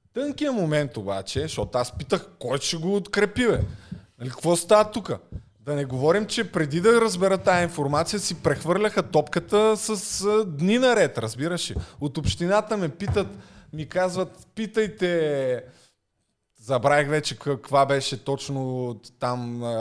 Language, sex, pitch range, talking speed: Bulgarian, male, 125-185 Hz, 125 wpm